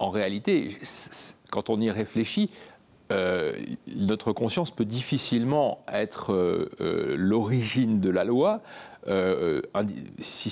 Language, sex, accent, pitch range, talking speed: French, male, French, 105-160 Hz, 90 wpm